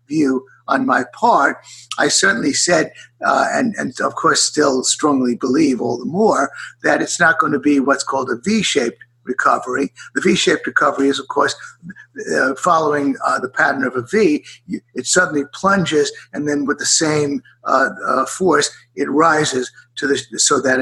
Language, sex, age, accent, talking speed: English, male, 50-69, American, 165 wpm